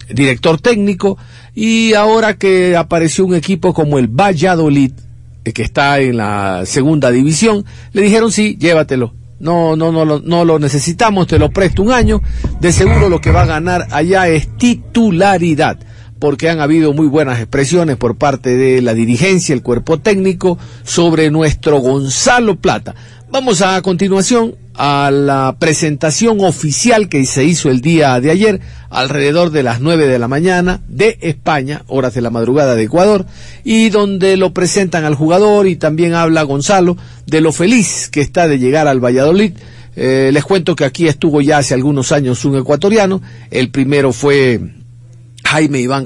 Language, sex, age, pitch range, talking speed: Spanish, male, 50-69, 130-185 Hz, 165 wpm